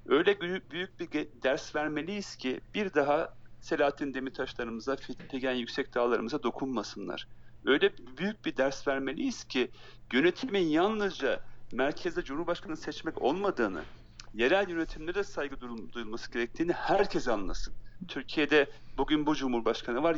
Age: 40-59